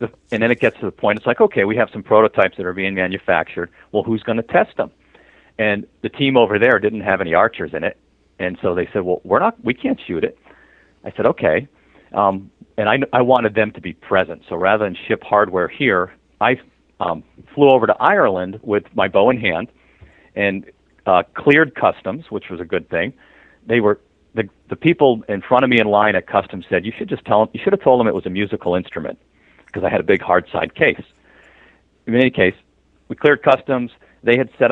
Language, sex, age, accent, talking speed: English, male, 40-59, American, 225 wpm